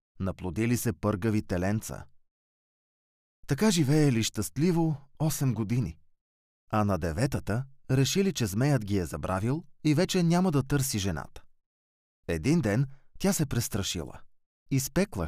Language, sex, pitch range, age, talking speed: Bulgarian, male, 85-135 Hz, 30-49, 120 wpm